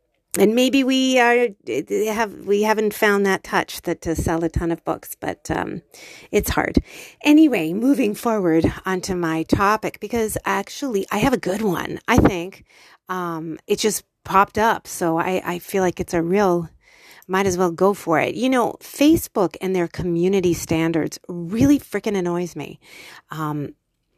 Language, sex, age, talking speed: English, female, 40-59, 165 wpm